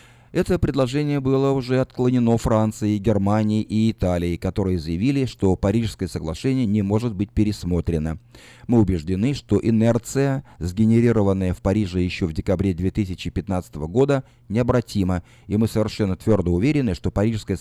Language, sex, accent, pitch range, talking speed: Russian, male, native, 95-130 Hz, 130 wpm